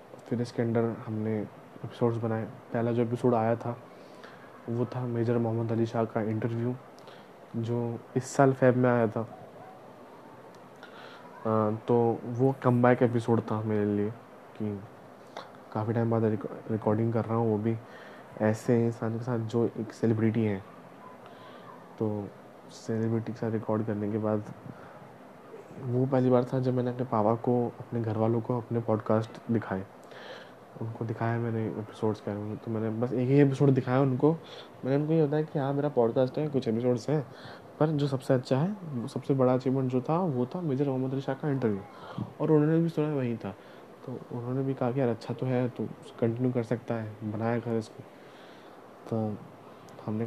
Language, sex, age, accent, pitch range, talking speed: Hindi, male, 20-39, native, 110-130 Hz, 175 wpm